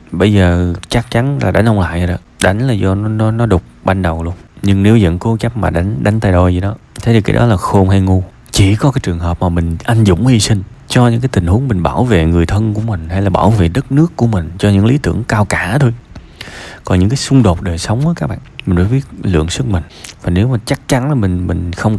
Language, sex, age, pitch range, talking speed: Vietnamese, male, 20-39, 90-115 Hz, 280 wpm